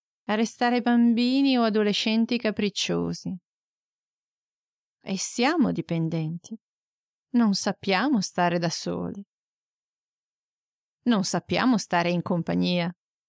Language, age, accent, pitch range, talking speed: Italian, 30-49, native, 185-230 Hz, 85 wpm